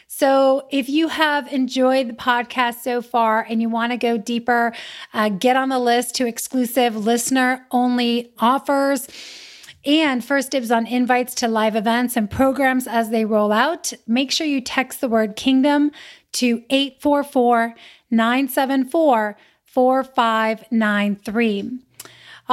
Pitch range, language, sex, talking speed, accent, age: 230-270 Hz, English, female, 125 wpm, American, 30-49